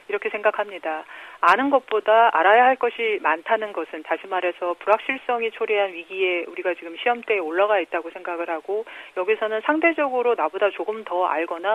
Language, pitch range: Korean, 180-245 Hz